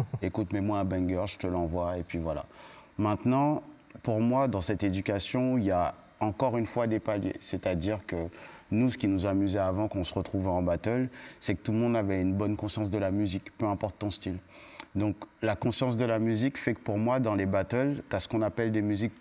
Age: 30-49